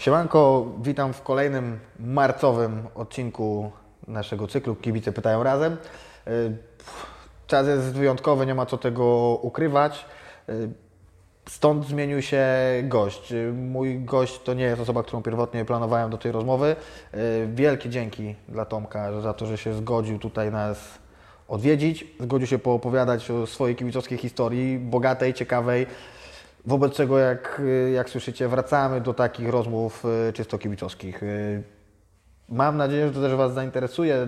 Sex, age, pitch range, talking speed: male, 20-39, 115-135 Hz, 130 wpm